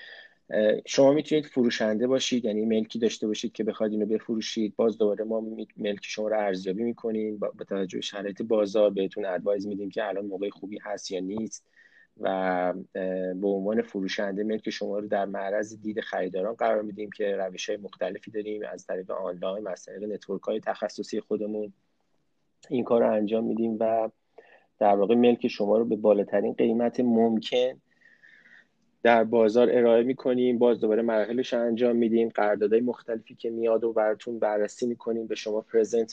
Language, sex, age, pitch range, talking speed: Persian, male, 30-49, 105-120 Hz, 160 wpm